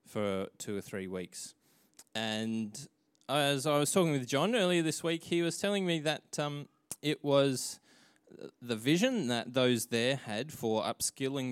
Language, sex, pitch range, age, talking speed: English, male, 105-140 Hz, 20-39, 160 wpm